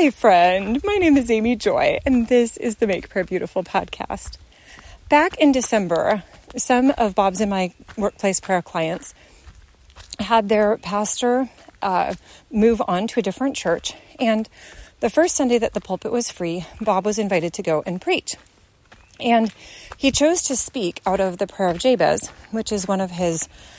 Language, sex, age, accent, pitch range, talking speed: English, female, 30-49, American, 190-245 Hz, 170 wpm